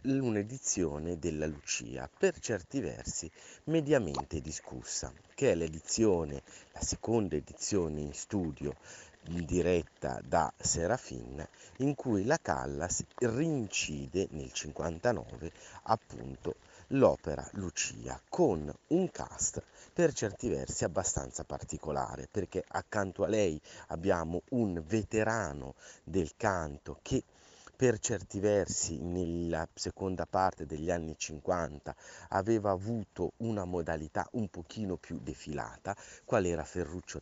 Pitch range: 80-105 Hz